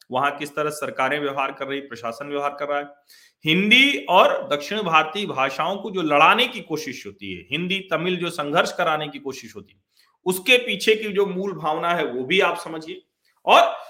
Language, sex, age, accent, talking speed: Hindi, male, 40-59, native, 200 wpm